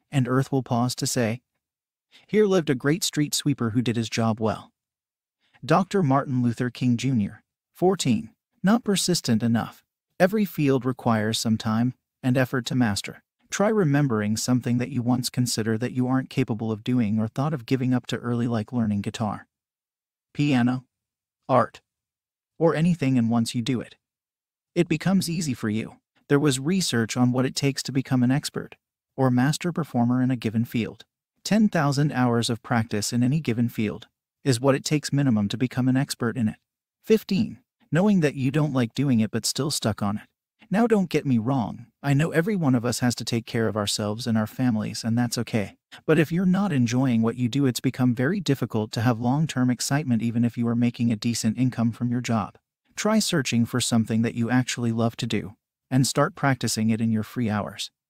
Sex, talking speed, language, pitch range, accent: male, 195 wpm, English, 115-145 Hz, American